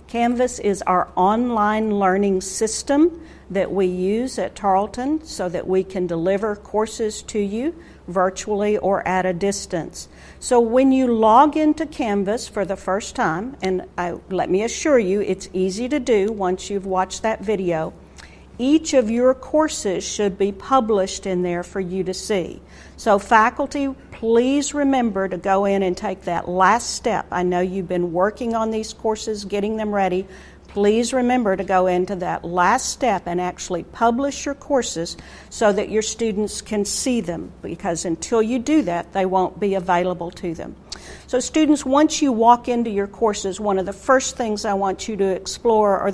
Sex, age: female, 50-69